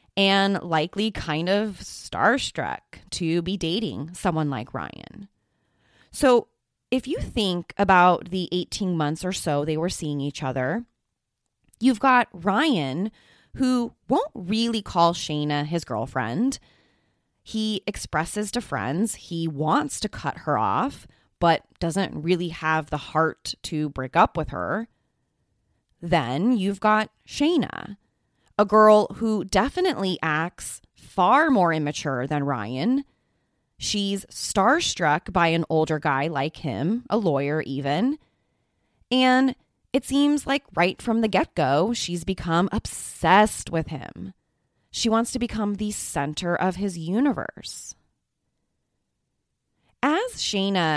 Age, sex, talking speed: 20-39, female, 125 wpm